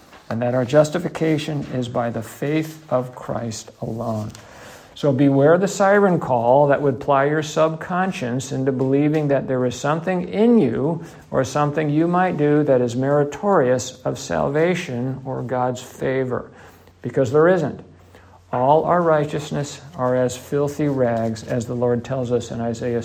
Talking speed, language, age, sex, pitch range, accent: 155 wpm, English, 50-69, male, 125-150 Hz, American